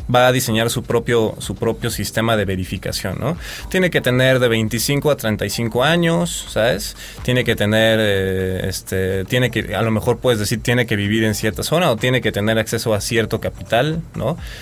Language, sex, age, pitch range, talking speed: English, male, 20-39, 105-125 Hz, 175 wpm